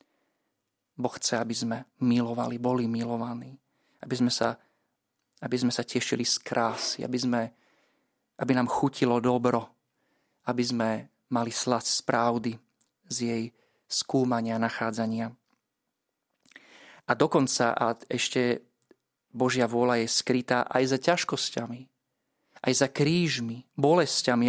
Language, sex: Slovak, male